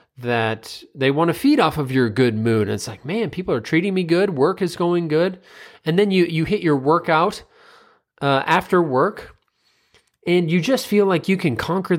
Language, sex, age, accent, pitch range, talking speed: English, male, 30-49, American, 115-155 Hz, 200 wpm